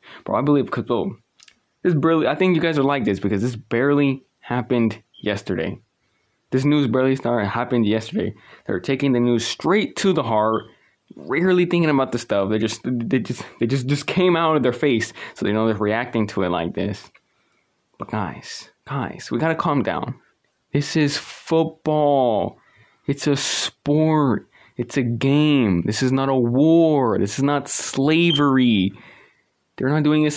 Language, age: English, 20-39